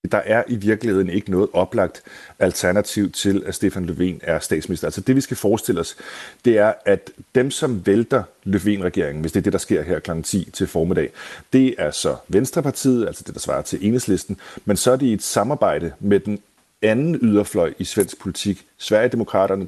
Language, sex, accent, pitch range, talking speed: Danish, male, native, 90-110 Hz, 190 wpm